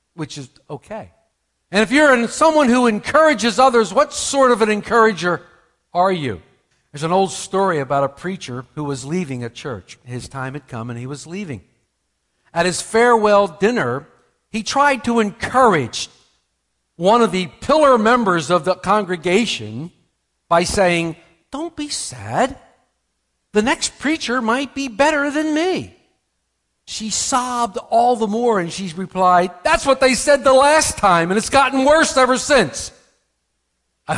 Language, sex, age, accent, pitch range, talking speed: English, male, 60-79, American, 160-245 Hz, 155 wpm